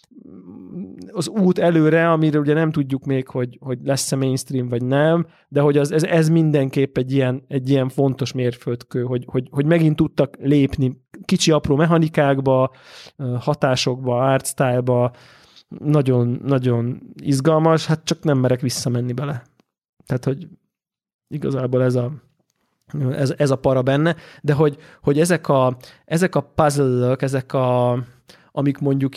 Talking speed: 135 wpm